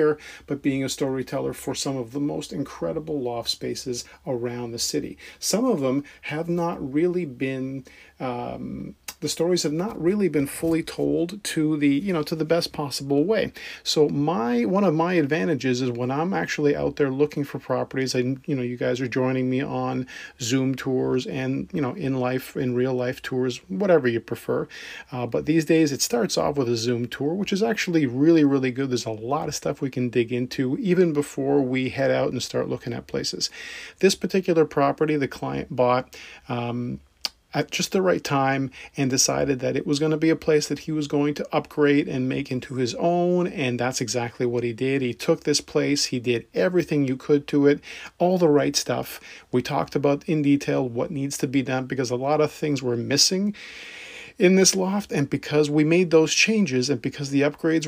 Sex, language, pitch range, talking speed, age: male, English, 130-160 Hz, 205 wpm, 40-59